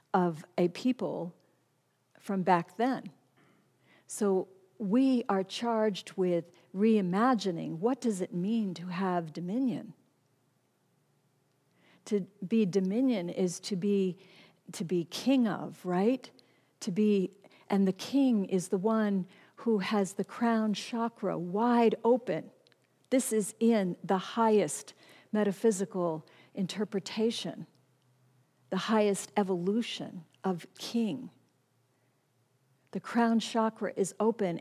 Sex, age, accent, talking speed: female, 50-69, American, 110 wpm